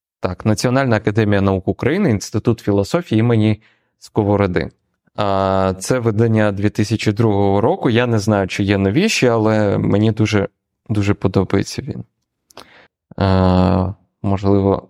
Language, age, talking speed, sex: Ukrainian, 20-39, 105 wpm, male